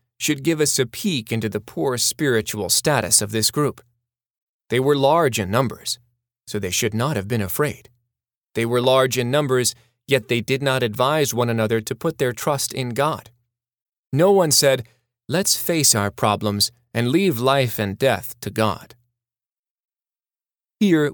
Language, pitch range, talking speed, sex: English, 110-130 Hz, 165 wpm, male